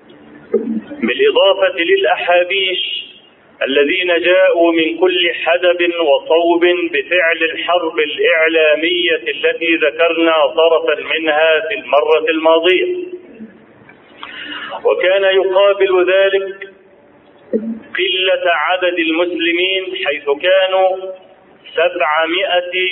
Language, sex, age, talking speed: Arabic, male, 40-59, 70 wpm